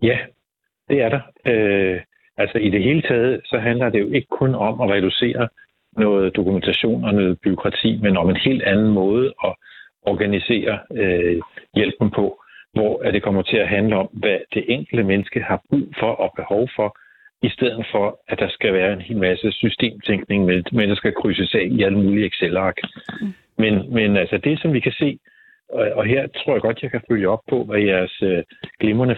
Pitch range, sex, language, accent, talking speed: 100-130 Hz, male, Danish, native, 195 wpm